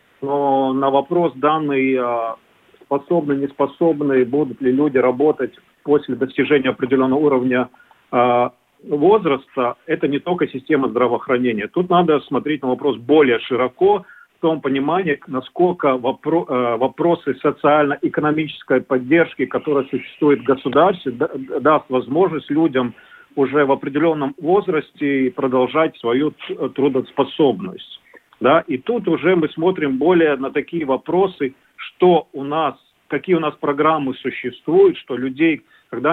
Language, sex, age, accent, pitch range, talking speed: Russian, male, 40-59, native, 130-155 Hz, 115 wpm